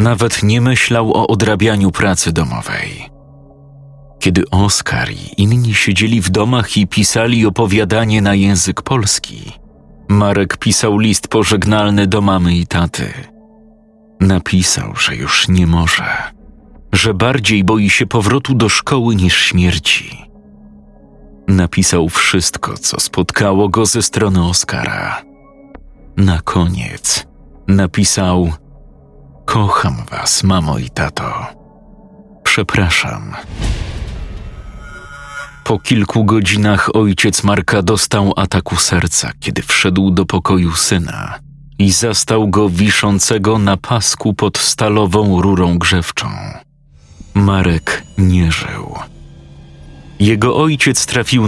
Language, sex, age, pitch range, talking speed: Polish, male, 40-59, 90-115 Hz, 105 wpm